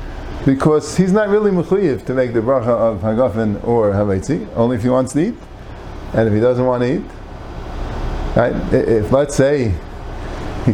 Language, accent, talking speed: English, American, 175 wpm